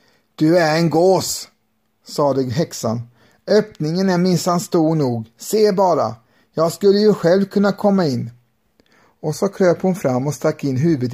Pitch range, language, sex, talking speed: 130-175 Hz, Swedish, male, 155 wpm